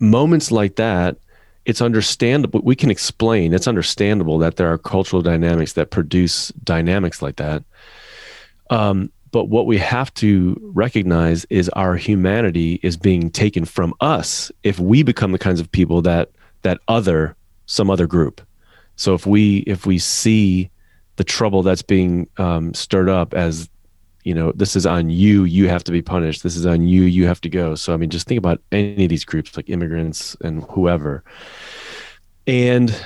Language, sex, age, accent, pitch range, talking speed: English, male, 30-49, American, 85-105 Hz, 175 wpm